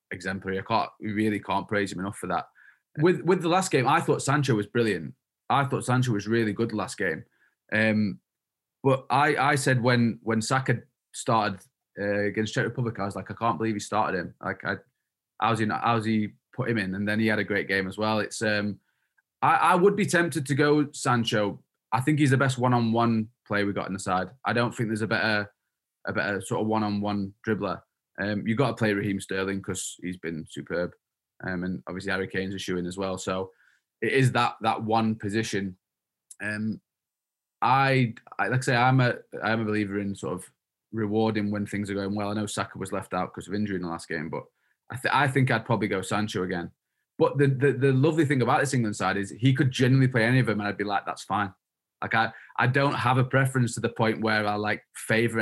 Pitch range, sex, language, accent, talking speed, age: 100-120 Hz, male, English, British, 230 wpm, 20-39